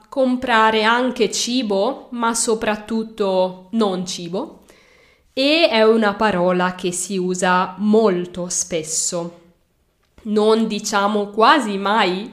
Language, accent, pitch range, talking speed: Italian, native, 185-235 Hz, 95 wpm